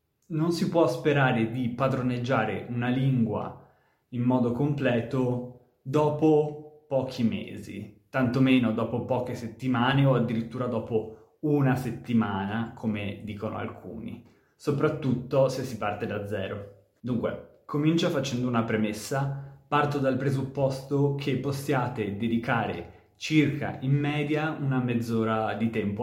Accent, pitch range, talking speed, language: native, 110-135 Hz, 115 wpm, Italian